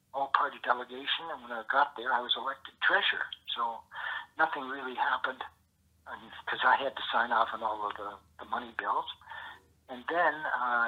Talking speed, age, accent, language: 180 wpm, 60-79, American, English